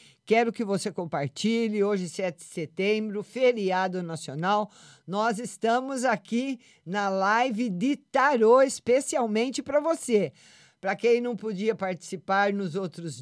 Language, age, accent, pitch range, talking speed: Portuguese, 50-69, Brazilian, 190-250 Hz, 125 wpm